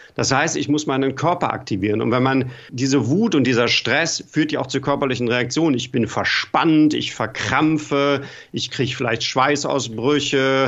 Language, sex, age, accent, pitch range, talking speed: German, male, 50-69, German, 125-145 Hz, 170 wpm